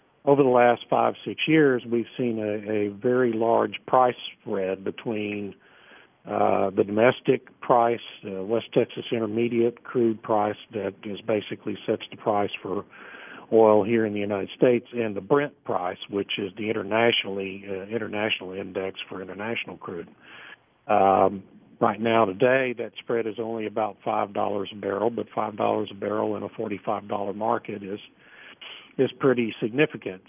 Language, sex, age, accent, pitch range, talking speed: English, male, 50-69, American, 100-115 Hz, 150 wpm